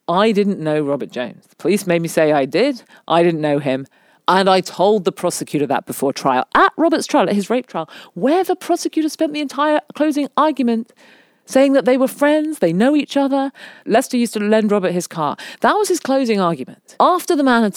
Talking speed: 215 wpm